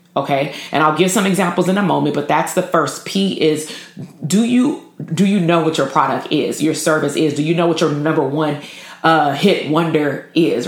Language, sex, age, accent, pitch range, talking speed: English, female, 30-49, American, 150-180 Hz, 215 wpm